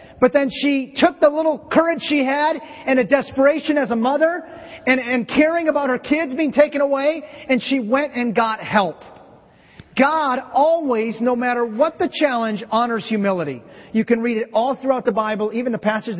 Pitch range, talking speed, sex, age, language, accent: 200-270 Hz, 185 wpm, male, 40-59, English, American